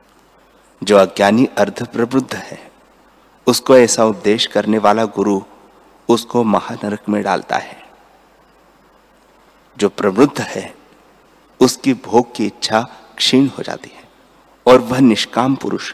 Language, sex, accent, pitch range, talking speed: Hindi, male, native, 105-135 Hz, 115 wpm